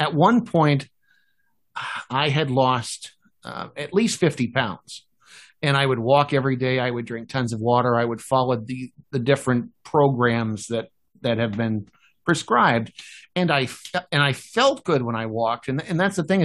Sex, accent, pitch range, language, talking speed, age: male, American, 125-155 Hz, English, 180 wpm, 50-69